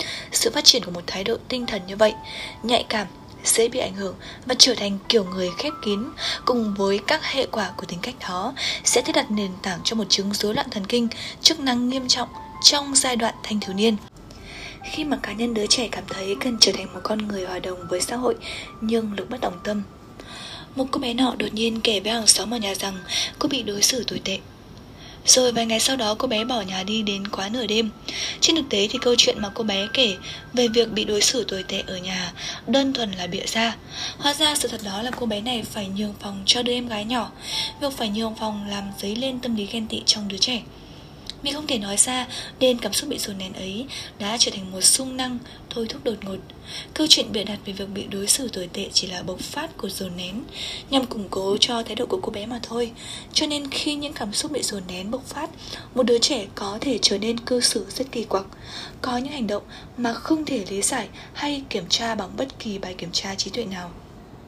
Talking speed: 245 wpm